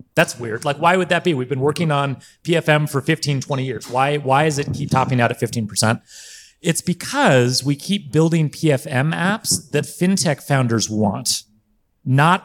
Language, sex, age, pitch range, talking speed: English, male, 30-49, 140-195 Hz, 180 wpm